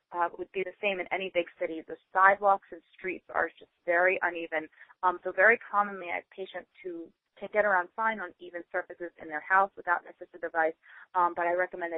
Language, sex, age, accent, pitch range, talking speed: English, female, 30-49, American, 170-200 Hz, 220 wpm